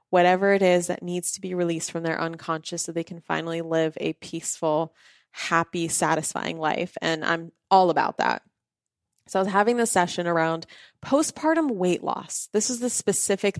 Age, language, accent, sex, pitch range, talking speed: 20-39, English, American, female, 170-205 Hz, 175 wpm